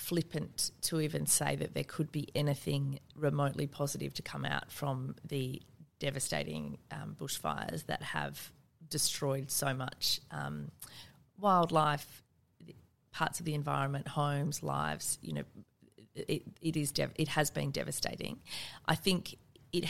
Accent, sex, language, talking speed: Australian, female, English, 135 wpm